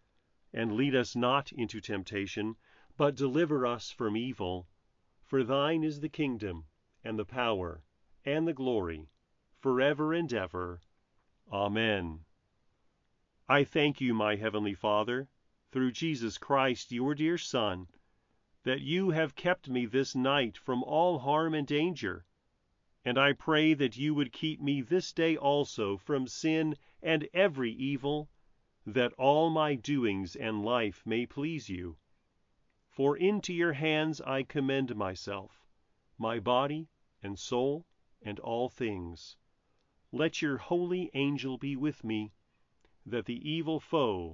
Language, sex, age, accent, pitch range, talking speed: English, male, 40-59, American, 105-145 Hz, 135 wpm